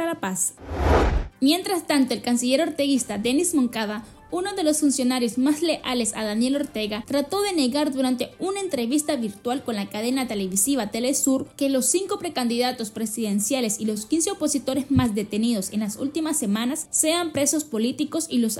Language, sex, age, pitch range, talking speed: Spanish, female, 20-39, 220-295 Hz, 165 wpm